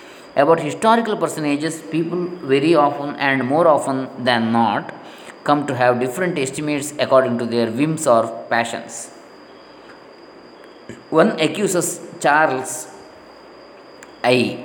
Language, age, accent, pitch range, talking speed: English, 20-39, Indian, 120-150 Hz, 105 wpm